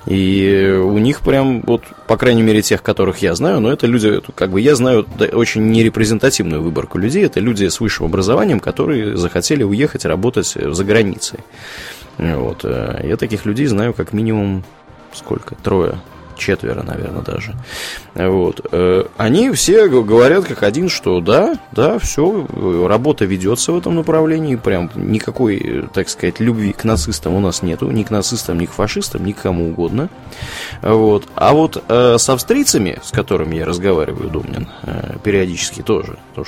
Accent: native